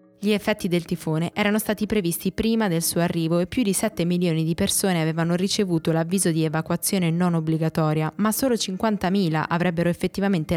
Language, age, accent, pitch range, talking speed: Italian, 20-39, native, 160-200 Hz, 170 wpm